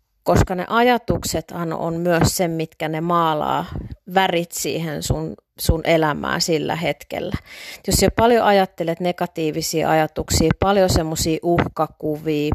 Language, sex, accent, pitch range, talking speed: Finnish, female, native, 160-180 Hz, 120 wpm